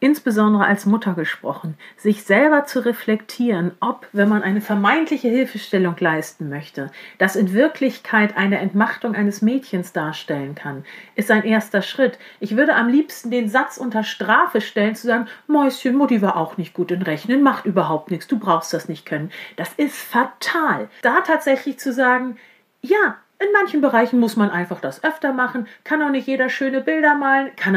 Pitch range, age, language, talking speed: 200-265 Hz, 40-59, German, 175 wpm